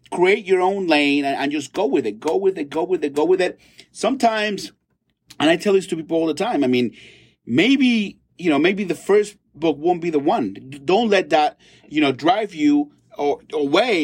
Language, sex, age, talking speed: English, male, 30-49, 210 wpm